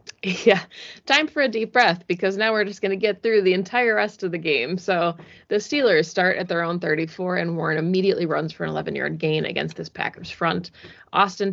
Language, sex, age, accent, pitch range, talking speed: English, female, 20-39, American, 165-195 Hz, 220 wpm